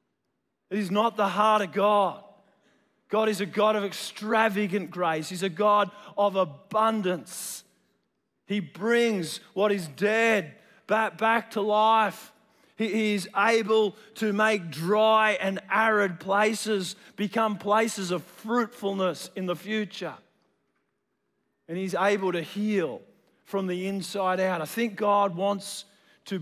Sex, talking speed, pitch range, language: male, 130 wpm, 195-225 Hz, English